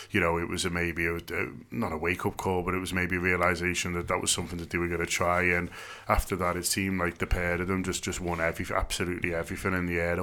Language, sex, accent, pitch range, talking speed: English, male, British, 90-100 Hz, 260 wpm